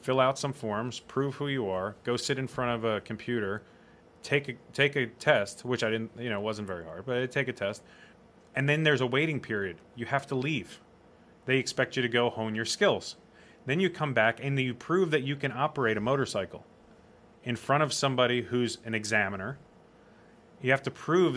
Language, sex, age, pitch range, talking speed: English, male, 30-49, 120-155 Hz, 210 wpm